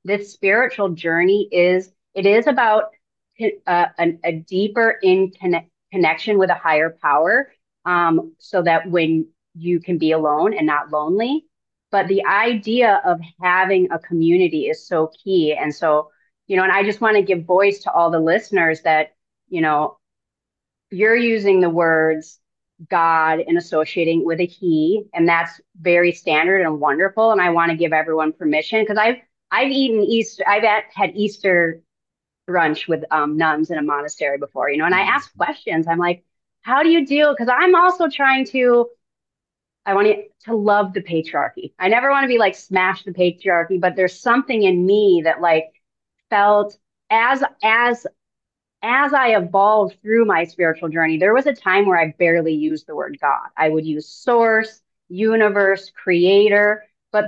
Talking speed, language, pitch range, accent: 170 wpm, English, 165-215 Hz, American